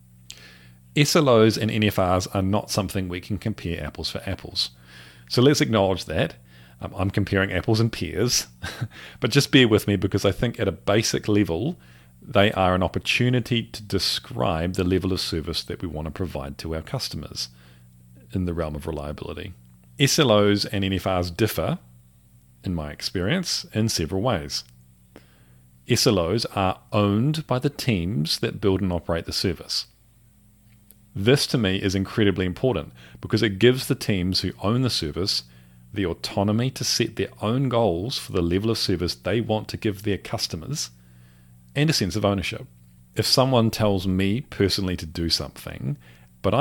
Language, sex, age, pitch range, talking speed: English, male, 40-59, 70-110 Hz, 160 wpm